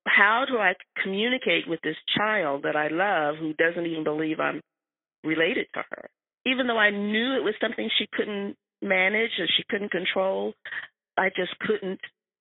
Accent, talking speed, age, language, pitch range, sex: American, 170 wpm, 40-59, English, 170-220 Hz, female